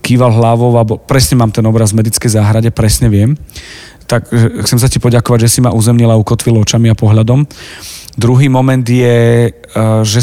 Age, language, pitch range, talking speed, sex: 40-59, Slovak, 115-135 Hz, 165 wpm, male